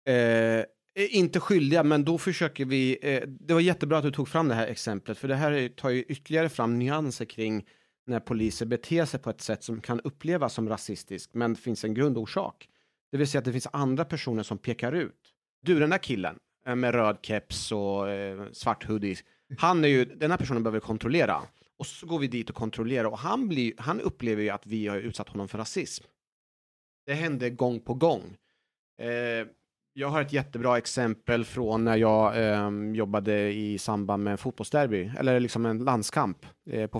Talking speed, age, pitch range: 195 wpm, 30-49, 110-145 Hz